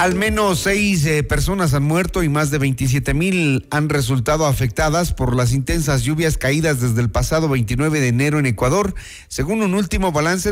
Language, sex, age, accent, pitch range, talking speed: Spanish, male, 40-59, Mexican, 130-175 Hz, 185 wpm